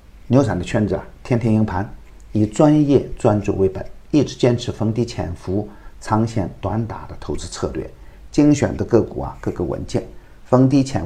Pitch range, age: 95-120 Hz, 50-69